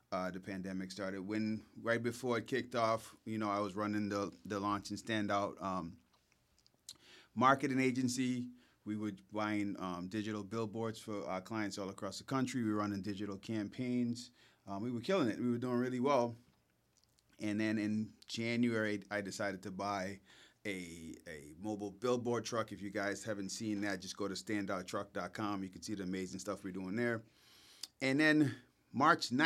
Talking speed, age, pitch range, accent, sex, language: 175 wpm, 30-49, 100-115 Hz, American, male, English